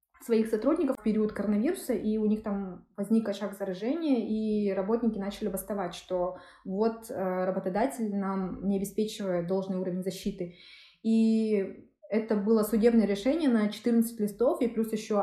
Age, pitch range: 20-39, 205-240 Hz